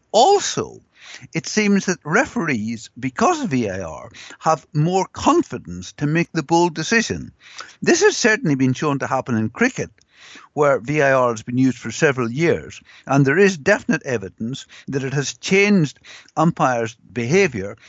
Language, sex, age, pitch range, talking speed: English, male, 60-79, 120-170 Hz, 150 wpm